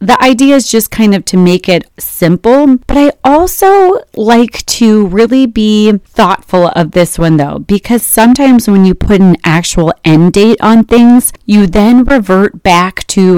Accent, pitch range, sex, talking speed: American, 165-220 Hz, female, 170 wpm